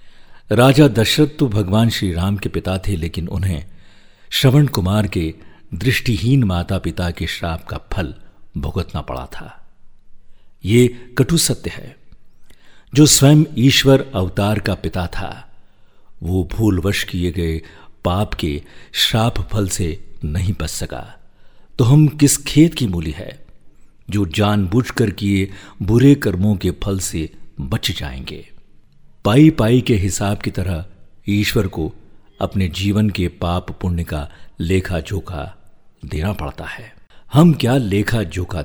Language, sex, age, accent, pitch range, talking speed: Hindi, male, 50-69, native, 90-110 Hz, 135 wpm